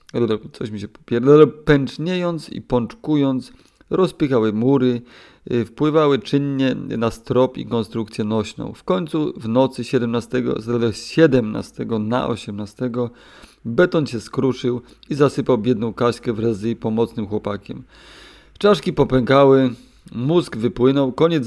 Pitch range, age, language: 110-135 Hz, 30-49, Polish